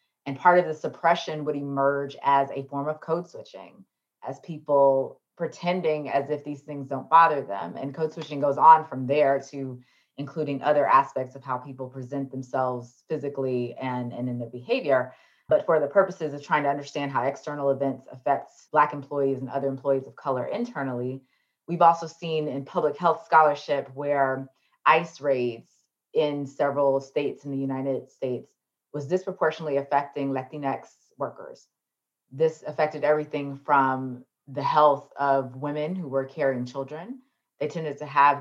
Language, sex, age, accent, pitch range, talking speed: English, female, 20-39, American, 135-150 Hz, 160 wpm